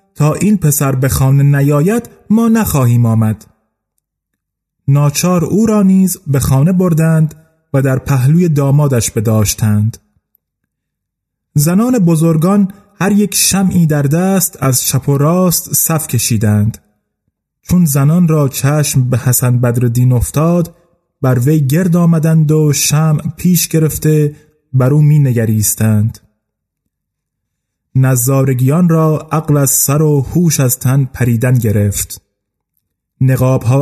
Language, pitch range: Persian, 125-160 Hz